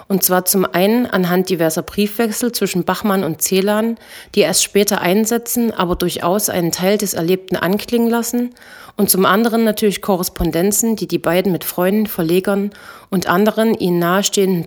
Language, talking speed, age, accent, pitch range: German, 155 wpm, 30-49, German, 175-215 Hz